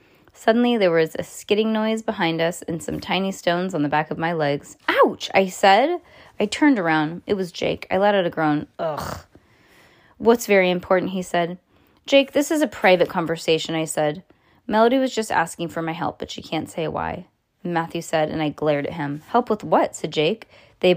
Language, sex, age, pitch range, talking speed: English, female, 20-39, 160-215 Hz, 205 wpm